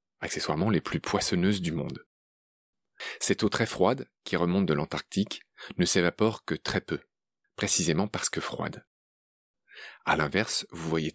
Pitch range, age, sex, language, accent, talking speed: 75-125 Hz, 30-49, male, French, French, 145 wpm